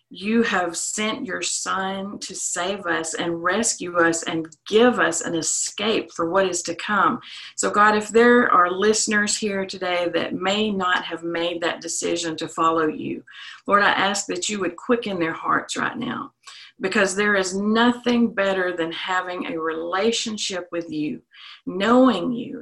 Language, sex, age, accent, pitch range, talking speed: English, female, 50-69, American, 170-215 Hz, 165 wpm